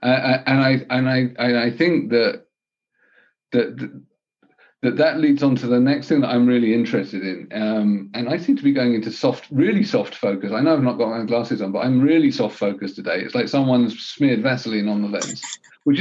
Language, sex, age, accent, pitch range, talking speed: English, male, 40-59, British, 110-150 Hz, 220 wpm